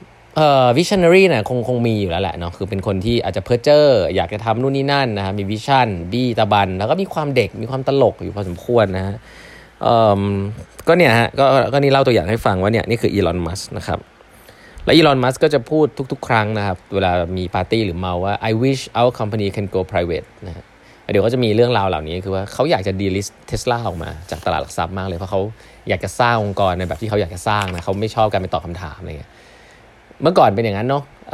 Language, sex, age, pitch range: Thai, male, 20-39, 95-130 Hz